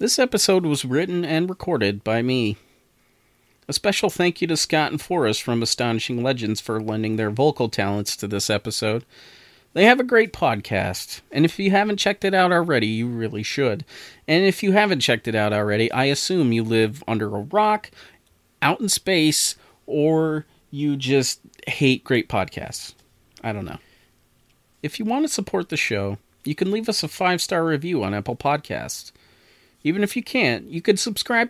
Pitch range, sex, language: 110-180 Hz, male, English